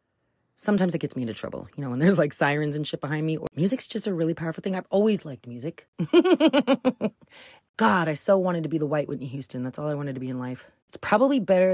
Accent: American